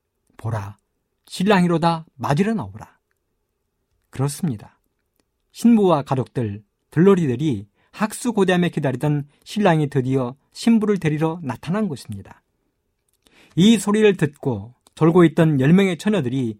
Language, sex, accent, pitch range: Korean, male, native, 115-185 Hz